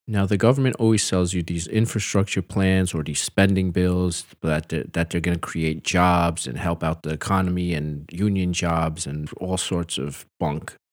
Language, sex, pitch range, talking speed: English, male, 85-100 Hz, 185 wpm